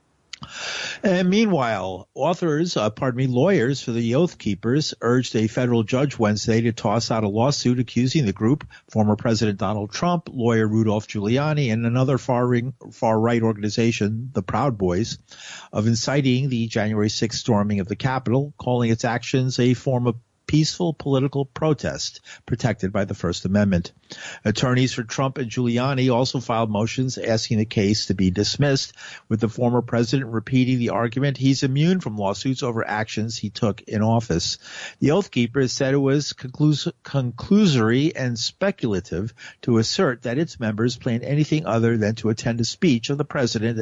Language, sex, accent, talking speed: English, male, American, 165 wpm